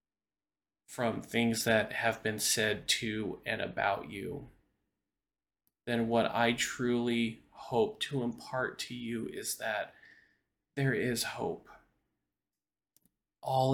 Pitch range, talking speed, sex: 110-125 Hz, 110 wpm, male